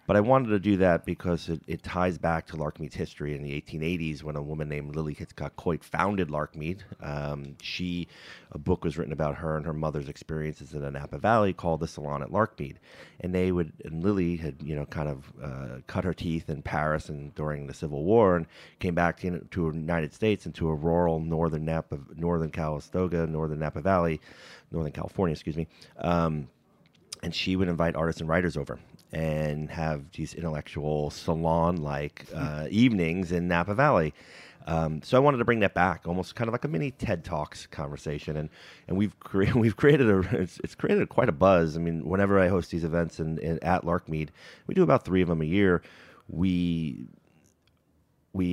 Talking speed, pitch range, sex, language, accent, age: 200 wpm, 75-90 Hz, male, English, American, 30-49